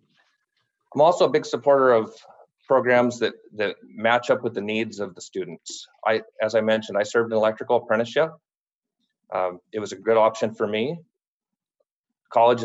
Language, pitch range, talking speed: English, 105-130 Hz, 165 wpm